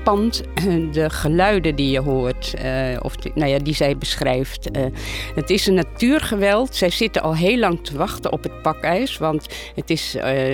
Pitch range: 130-165 Hz